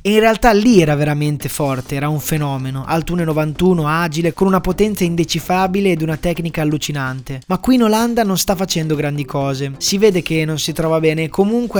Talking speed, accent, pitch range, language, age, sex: 200 wpm, native, 145-185 Hz, Italian, 20-39, male